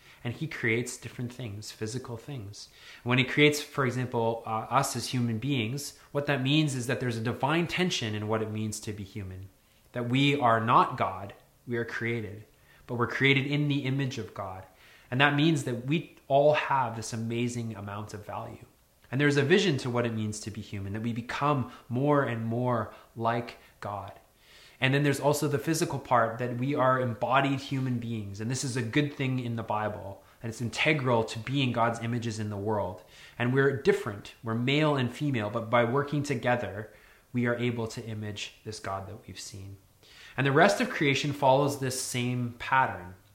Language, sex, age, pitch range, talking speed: English, male, 20-39, 110-140 Hz, 195 wpm